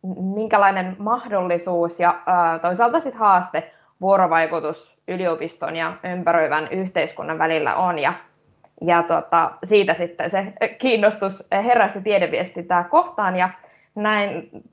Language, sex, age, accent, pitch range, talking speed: Finnish, female, 20-39, native, 180-230 Hz, 105 wpm